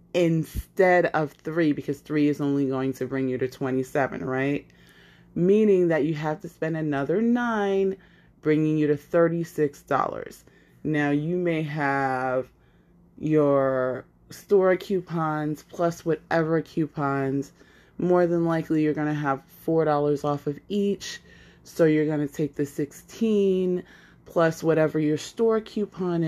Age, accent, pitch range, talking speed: 30-49, American, 140-165 Hz, 135 wpm